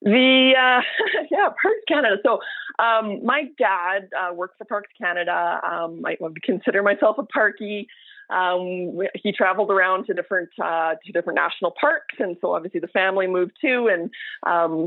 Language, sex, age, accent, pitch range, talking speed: English, female, 30-49, American, 170-230 Hz, 160 wpm